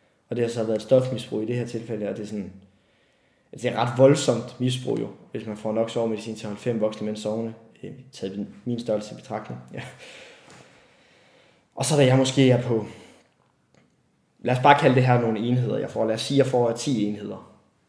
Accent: native